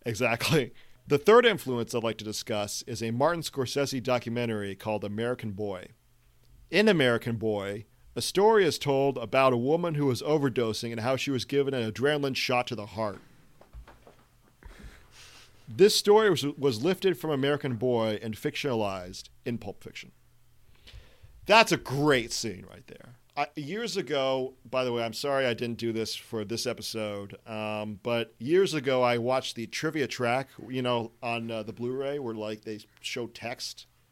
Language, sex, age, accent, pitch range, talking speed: English, male, 40-59, American, 110-140 Hz, 165 wpm